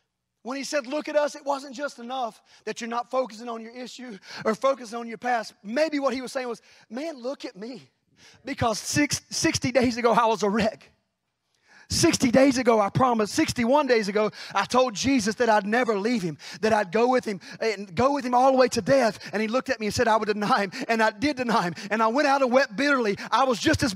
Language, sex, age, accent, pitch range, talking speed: English, male, 30-49, American, 210-285 Hz, 245 wpm